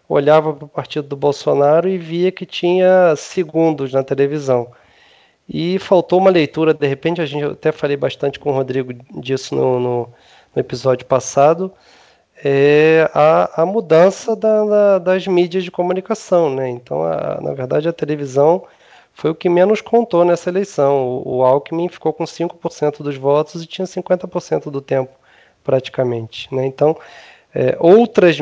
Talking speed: 155 wpm